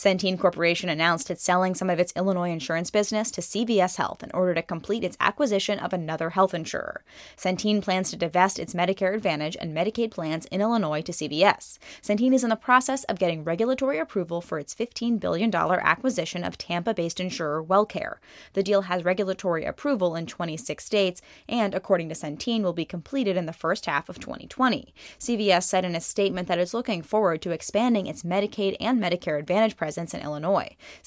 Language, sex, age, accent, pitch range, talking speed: English, female, 10-29, American, 170-210 Hz, 185 wpm